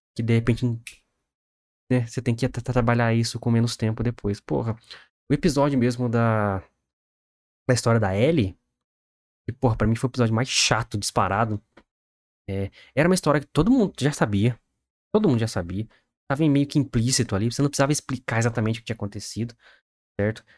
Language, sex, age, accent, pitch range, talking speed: Portuguese, male, 20-39, Brazilian, 105-135 Hz, 180 wpm